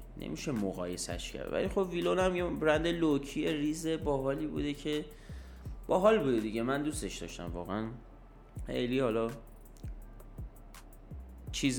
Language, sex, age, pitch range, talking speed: Persian, male, 30-49, 105-145 Hz, 125 wpm